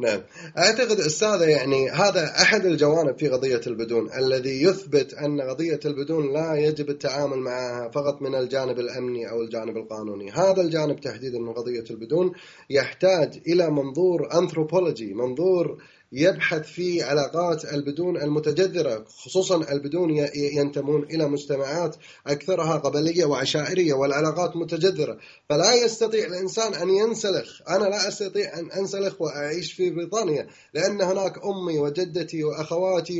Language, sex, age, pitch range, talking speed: Arabic, male, 20-39, 145-185 Hz, 125 wpm